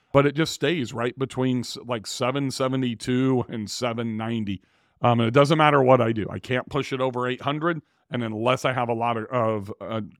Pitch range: 115-140 Hz